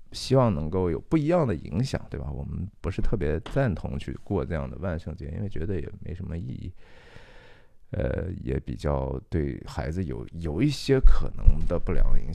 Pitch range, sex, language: 80-100 Hz, male, Chinese